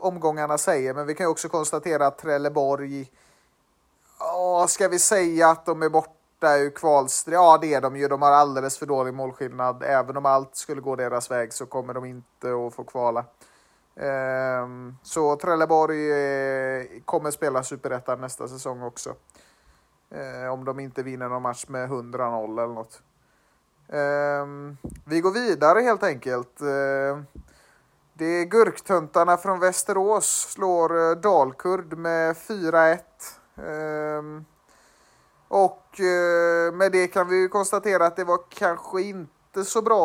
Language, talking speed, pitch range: Swedish, 130 wpm, 135-175 Hz